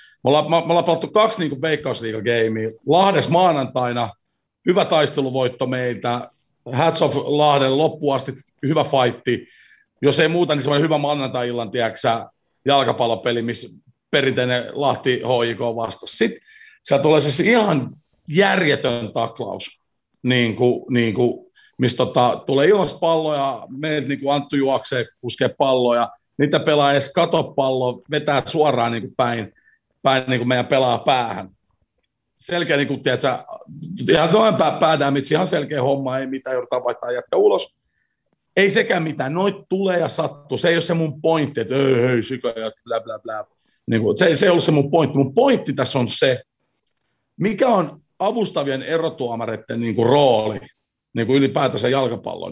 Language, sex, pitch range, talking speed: Finnish, male, 125-165 Hz, 145 wpm